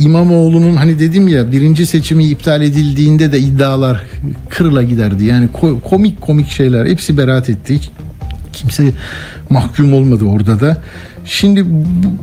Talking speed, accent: 125 wpm, native